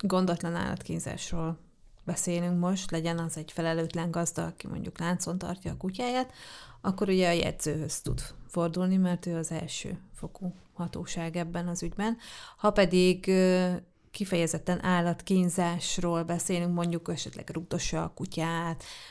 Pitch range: 170-185 Hz